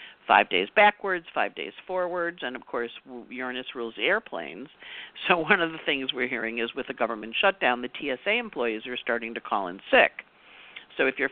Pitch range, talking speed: 125-170 Hz, 190 wpm